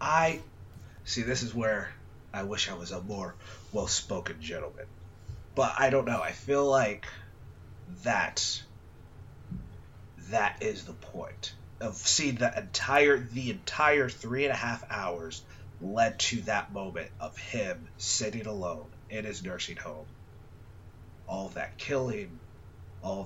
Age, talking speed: 30-49, 135 wpm